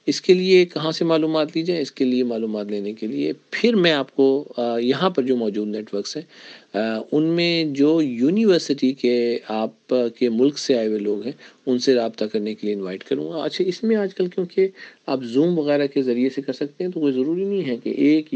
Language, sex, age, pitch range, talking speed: Urdu, male, 50-69, 120-150 Hz, 230 wpm